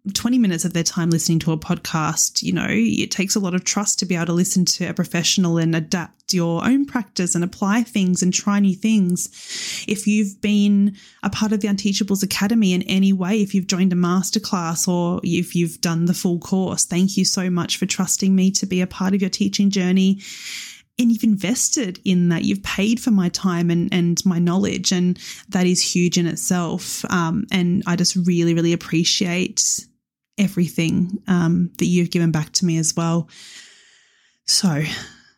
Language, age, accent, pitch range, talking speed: English, 20-39, Australian, 175-210 Hz, 195 wpm